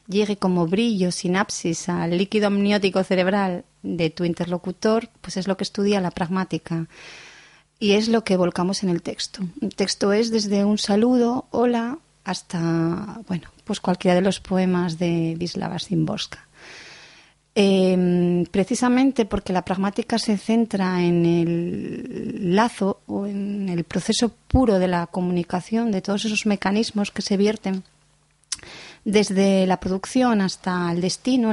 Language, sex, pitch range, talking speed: Spanish, female, 180-215 Hz, 135 wpm